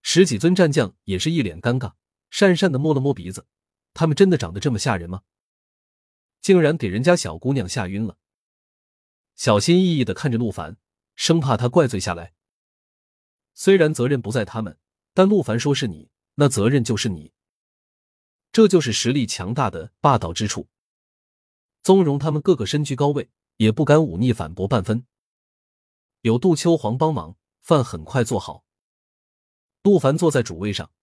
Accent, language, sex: native, Chinese, male